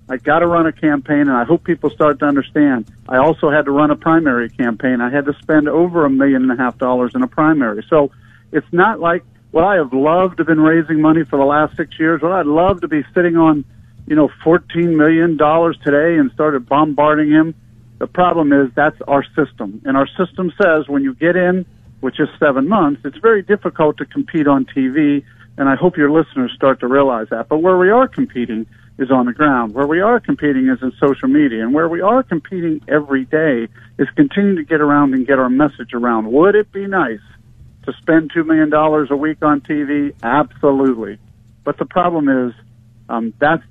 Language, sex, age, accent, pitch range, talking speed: English, male, 50-69, American, 130-165 Hz, 215 wpm